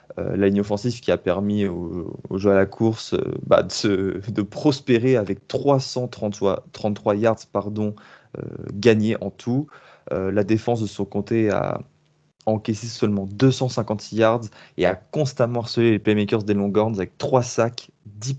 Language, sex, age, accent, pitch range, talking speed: French, male, 20-39, French, 100-120 Hz, 165 wpm